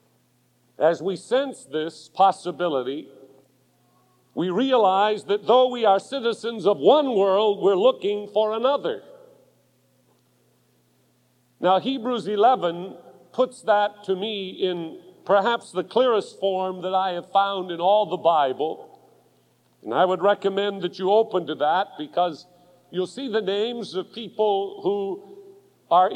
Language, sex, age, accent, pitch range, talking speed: English, male, 50-69, American, 185-250 Hz, 130 wpm